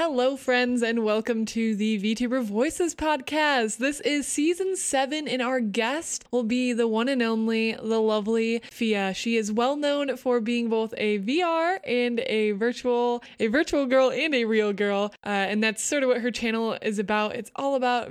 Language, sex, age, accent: English, female, 20-39, American